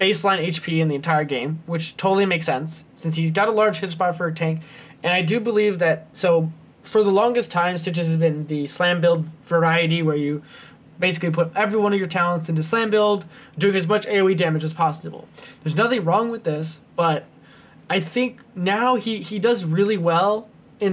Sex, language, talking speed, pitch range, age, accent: male, English, 205 wpm, 160-195 Hz, 20-39, American